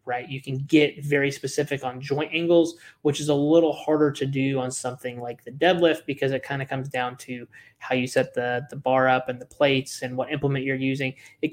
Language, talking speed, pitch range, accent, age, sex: English, 230 wpm, 130-155 Hz, American, 20-39, male